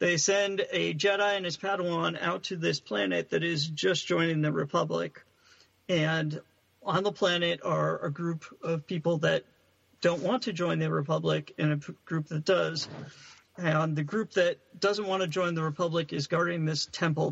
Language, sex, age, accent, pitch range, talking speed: English, male, 50-69, American, 150-190 Hz, 185 wpm